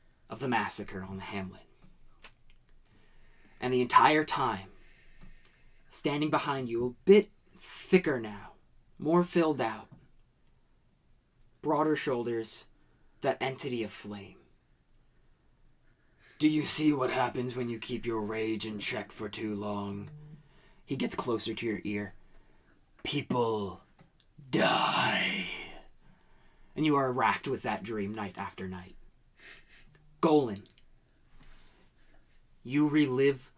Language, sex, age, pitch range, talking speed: English, male, 20-39, 105-145 Hz, 110 wpm